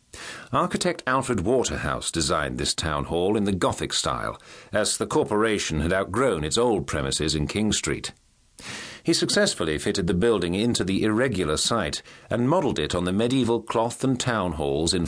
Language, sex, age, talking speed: English, male, 50-69, 165 wpm